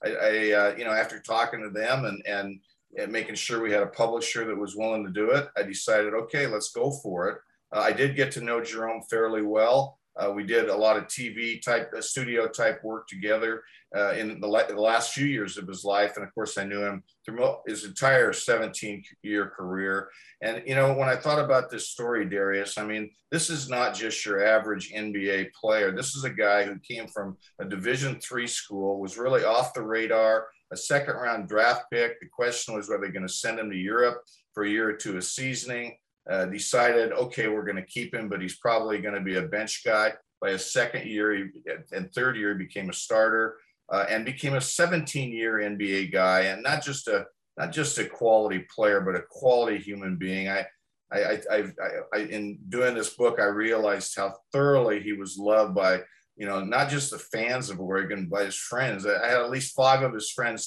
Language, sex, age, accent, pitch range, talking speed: English, male, 50-69, American, 100-125 Hz, 220 wpm